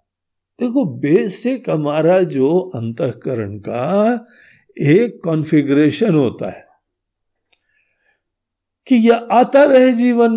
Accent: native